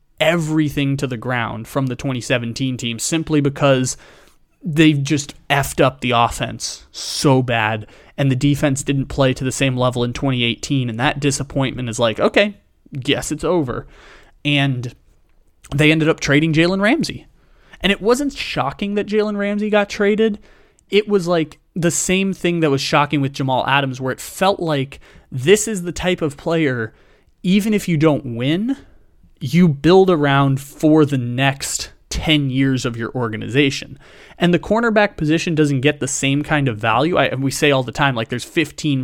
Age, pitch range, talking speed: 20-39, 125-160 Hz, 170 wpm